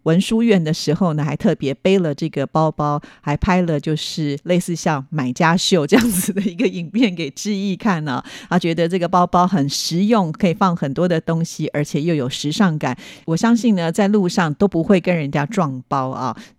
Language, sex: Chinese, female